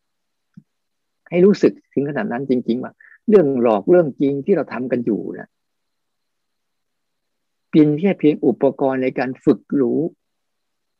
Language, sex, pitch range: Thai, male, 115-150 Hz